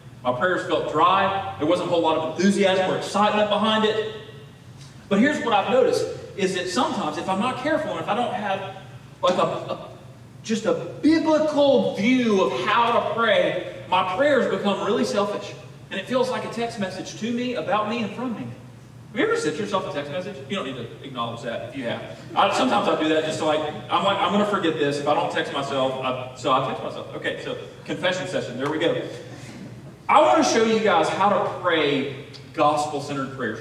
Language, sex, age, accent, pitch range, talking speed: English, male, 30-49, American, 140-215 Hz, 220 wpm